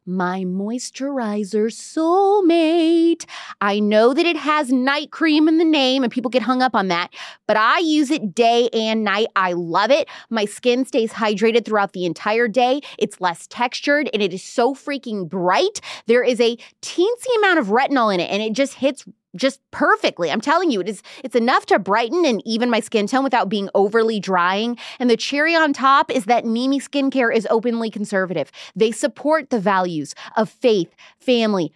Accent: American